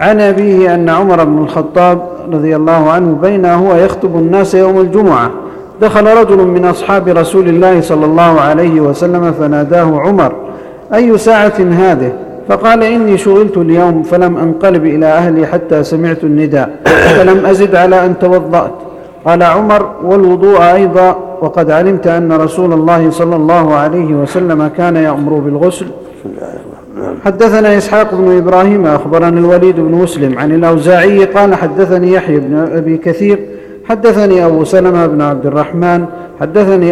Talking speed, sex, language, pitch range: 140 wpm, male, Arabic, 160-190 Hz